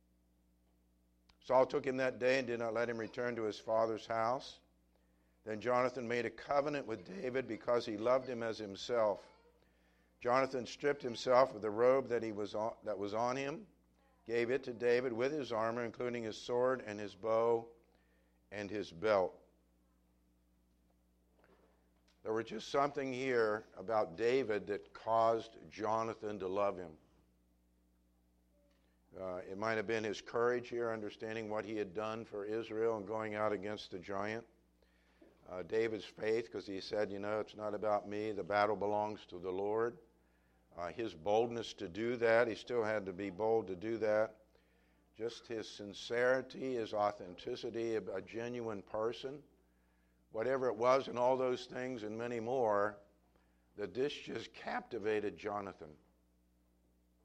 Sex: male